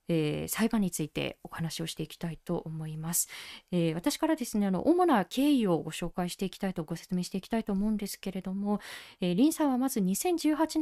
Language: Japanese